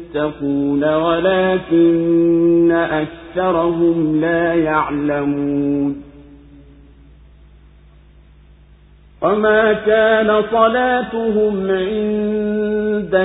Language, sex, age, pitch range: Swahili, male, 50-69, 170-210 Hz